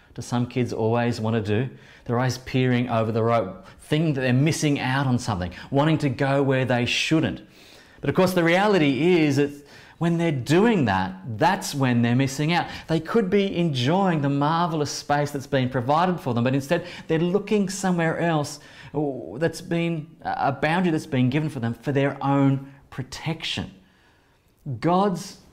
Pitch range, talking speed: 115-160 Hz, 175 wpm